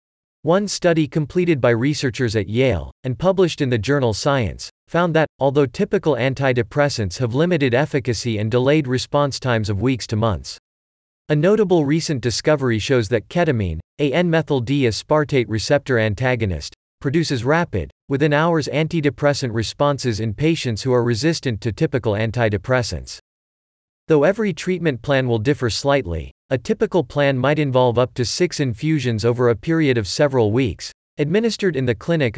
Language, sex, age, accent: English, male, 40-59, American